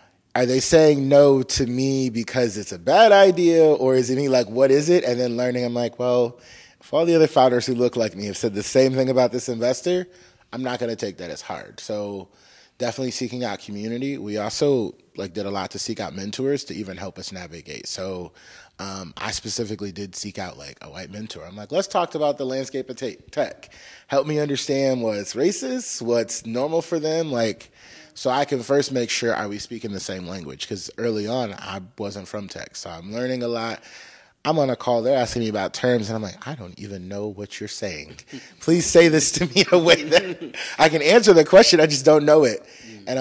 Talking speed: 225 wpm